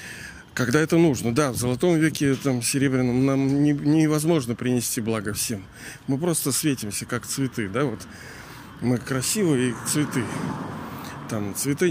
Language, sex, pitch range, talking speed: Russian, male, 110-140 Hz, 130 wpm